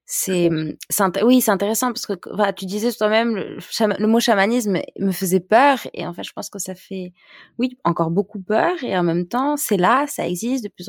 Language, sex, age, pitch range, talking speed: French, female, 20-39, 175-210 Hz, 230 wpm